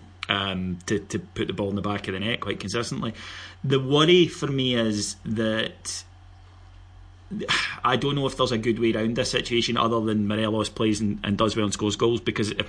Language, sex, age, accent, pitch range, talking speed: English, male, 30-49, British, 100-115 Hz, 210 wpm